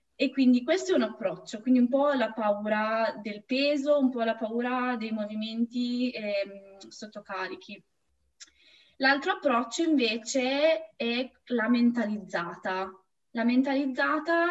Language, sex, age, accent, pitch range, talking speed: Italian, female, 20-39, native, 225-270 Hz, 120 wpm